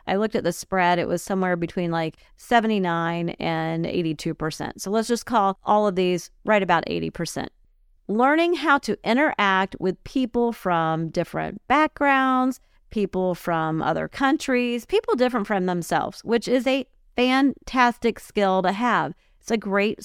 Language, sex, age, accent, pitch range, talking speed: English, female, 40-59, American, 180-245 Hz, 150 wpm